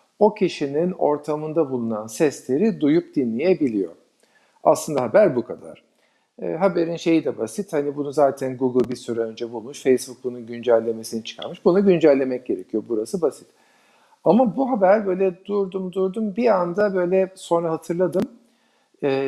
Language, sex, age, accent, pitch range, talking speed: Turkish, male, 50-69, native, 130-175 Hz, 140 wpm